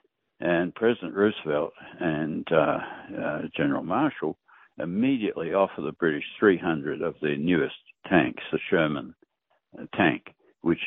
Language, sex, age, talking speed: English, male, 60-79, 115 wpm